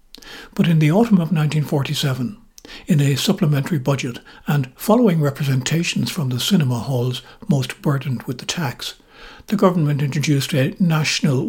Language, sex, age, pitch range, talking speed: English, male, 60-79, 130-170 Hz, 140 wpm